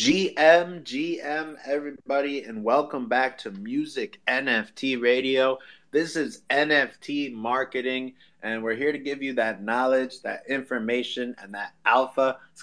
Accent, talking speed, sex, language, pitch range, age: American, 135 wpm, male, English, 115-135 Hz, 30-49